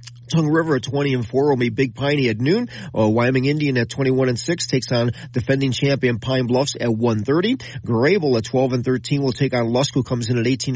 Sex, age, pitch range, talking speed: male, 40-59, 120-140 Hz, 235 wpm